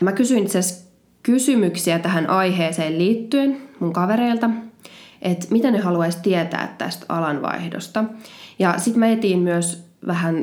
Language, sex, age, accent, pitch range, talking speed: Finnish, female, 20-39, native, 170-215 Hz, 125 wpm